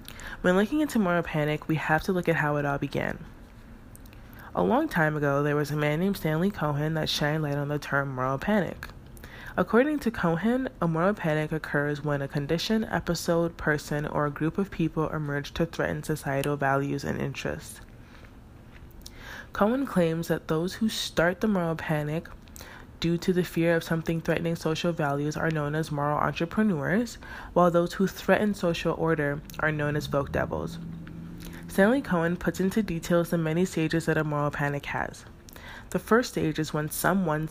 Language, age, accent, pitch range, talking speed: English, 20-39, American, 150-180 Hz, 175 wpm